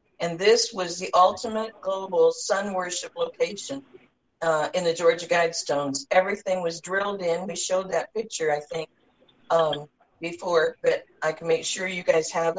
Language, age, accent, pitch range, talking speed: English, 50-69, American, 165-210 Hz, 160 wpm